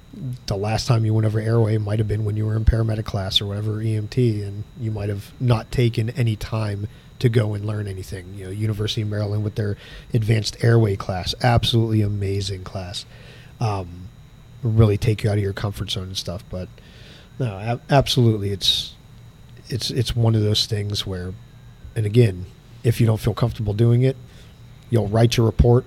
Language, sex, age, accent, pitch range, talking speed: English, male, 40-59, American, 105-120 Hz, 185 wpm